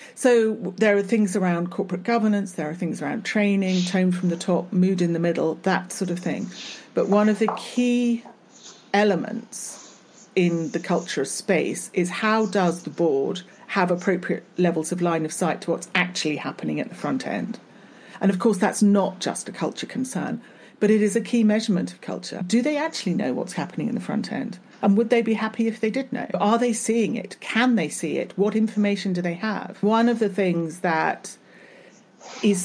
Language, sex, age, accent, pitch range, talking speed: English, female, 40-59, British, 180-220 Hz, 200 wpm